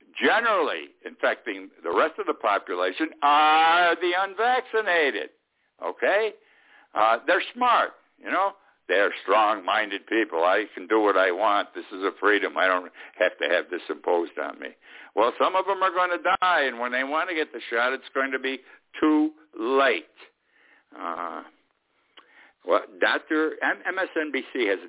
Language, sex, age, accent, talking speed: English, male, 60-79, American, 155 wpm